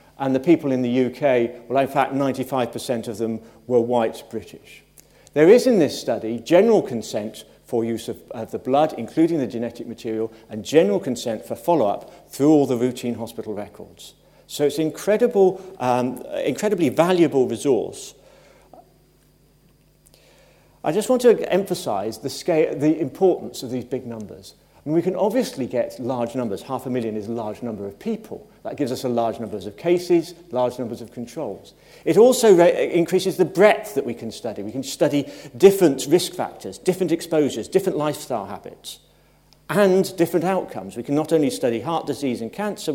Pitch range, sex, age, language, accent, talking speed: 115-165 Hz, male, 50-69, English, British, 170 wpm